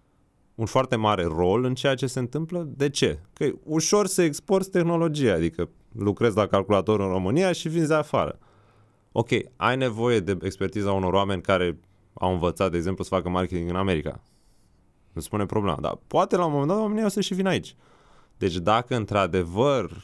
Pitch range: 95-130 Hz